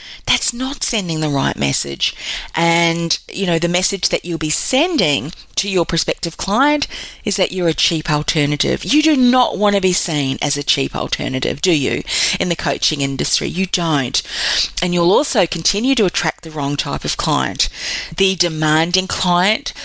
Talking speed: 175 wpm